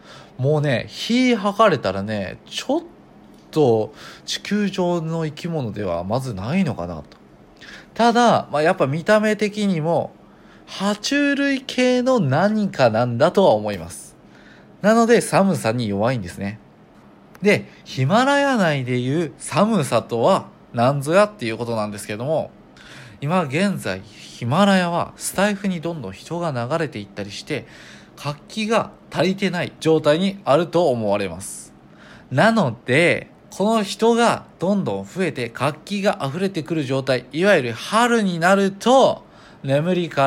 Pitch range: 125-200 Hz